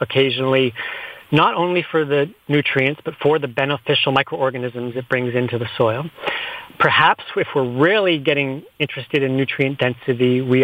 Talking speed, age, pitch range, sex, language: 145 wpm, 30-49, 130-155 Hz, male, English